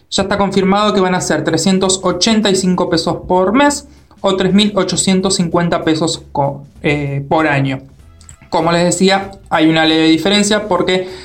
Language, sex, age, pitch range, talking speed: Spanish, male, 20-39, 155-190 Hz, 135 wpm